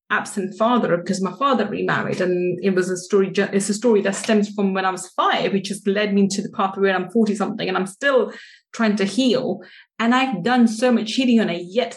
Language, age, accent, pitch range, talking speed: English, 20-39, British, 195-240 Hz, 235 wpm